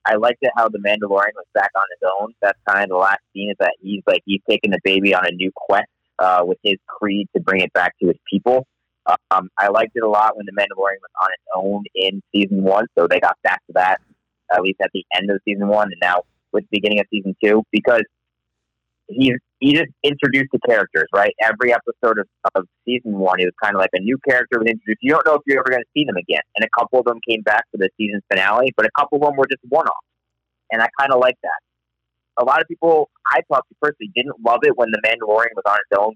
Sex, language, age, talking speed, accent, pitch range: male, English, 30-49, 255 wpm, American, 95-125 Hz